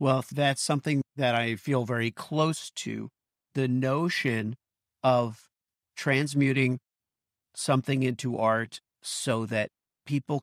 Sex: male